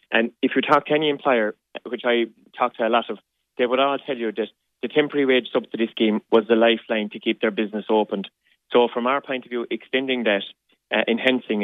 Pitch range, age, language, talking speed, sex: 110-120 Hz, 20-39, English, 220 wpm, male